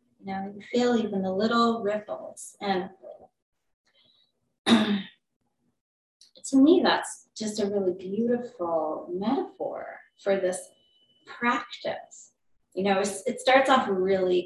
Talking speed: 105 wpm